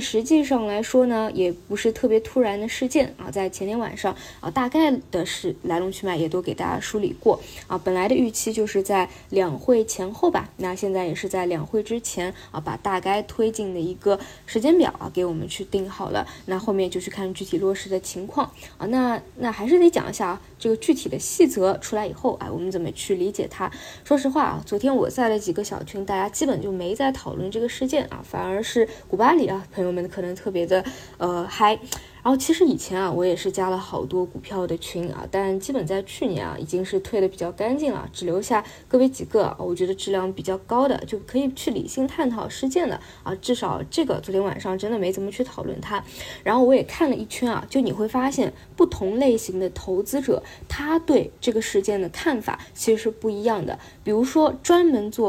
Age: 20-39